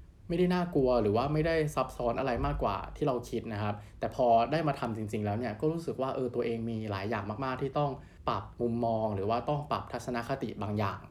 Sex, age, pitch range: male, 20-39, 105-130 Hz